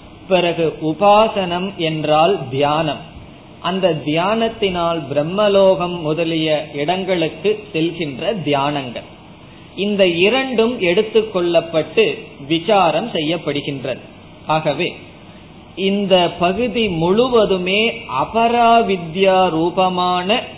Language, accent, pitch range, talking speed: Tamil, native, 160-205 Hz, 50 wpm